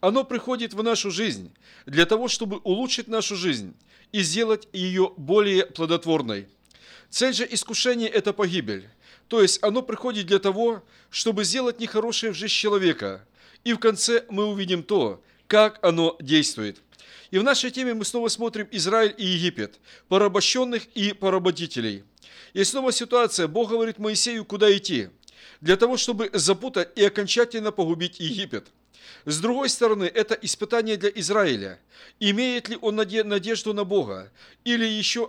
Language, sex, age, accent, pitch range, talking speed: Russian, male, 50-69, native, 185-230 Hz, 150 wpm